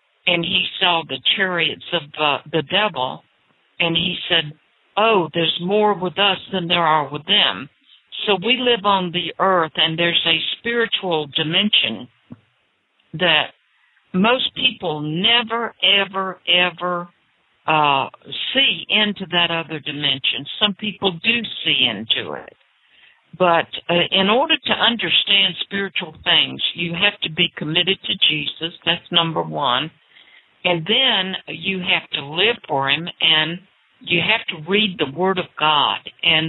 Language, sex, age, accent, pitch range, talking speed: English, female, 60-79, American, 155-195 Hz, 145 wpm